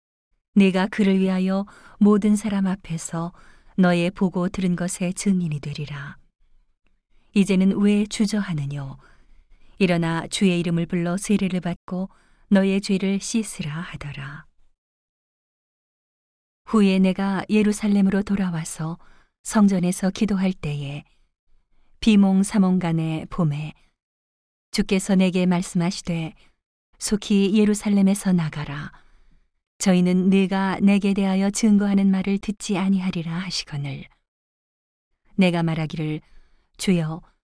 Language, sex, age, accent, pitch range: Korean, female, 40-59, native, 160-200 Hz